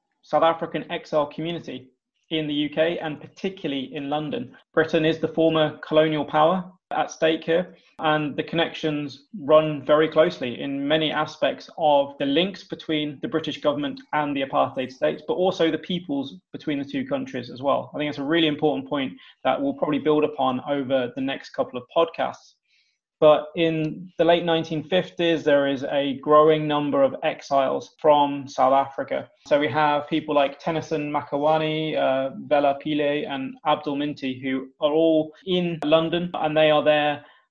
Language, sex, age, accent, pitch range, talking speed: English, male, 20-39, British, 145-165 Hz, 170 wpm